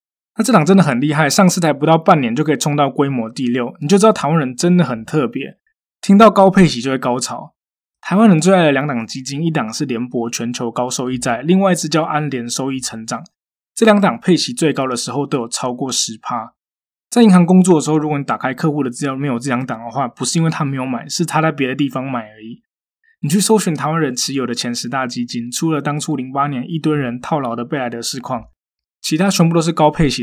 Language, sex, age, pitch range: Chinese, male, 20-39, 125-165 Hz